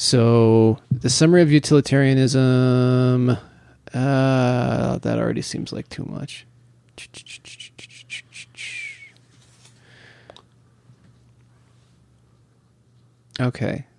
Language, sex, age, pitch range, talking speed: English, male, 20-39, 120-135 Hz, 55 wpm